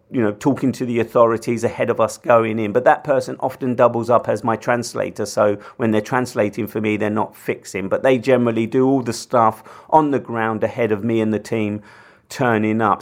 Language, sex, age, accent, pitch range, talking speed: English, male, 40-59, British, 110-125 Hz, 215 wpm